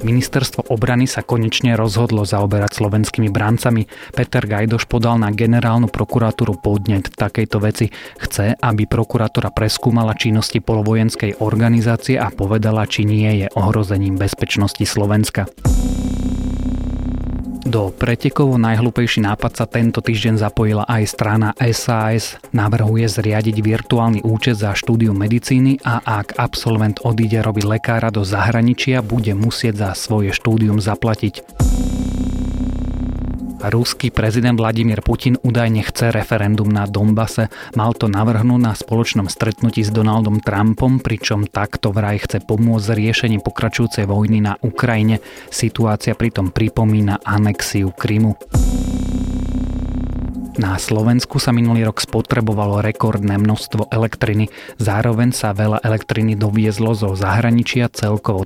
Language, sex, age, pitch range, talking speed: Slovak, male, 30-49, 105-115 Hz, 115 wpm